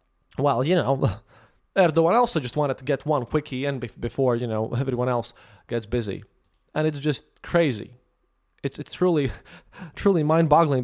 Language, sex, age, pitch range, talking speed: English, male, 20-39, 125-170 Hz, 160 wpm